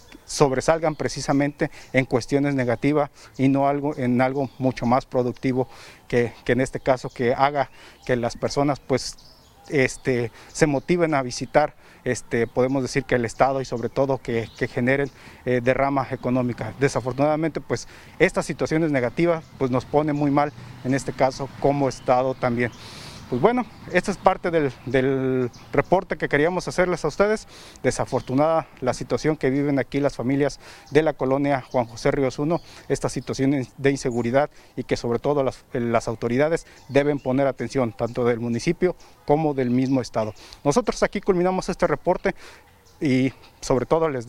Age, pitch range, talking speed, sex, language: 40-59, 125-145 Hz, 160 wpm, male, Spanish